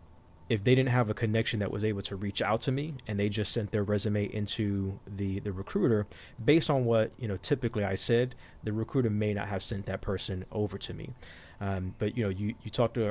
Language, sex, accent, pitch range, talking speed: English, male, American, 95-115 Hz, 230 wpm